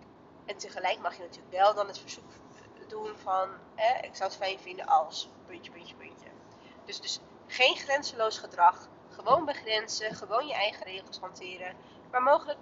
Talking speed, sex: 165 wpm, female